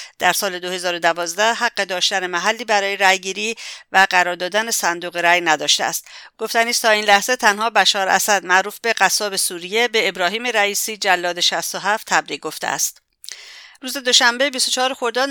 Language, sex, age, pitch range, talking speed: English, female, 50-69, 185-225 Hz, 155 wpm